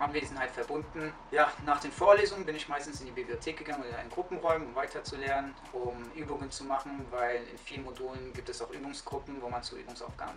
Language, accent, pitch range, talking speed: German, German, 120-150 Hz, 220 wpm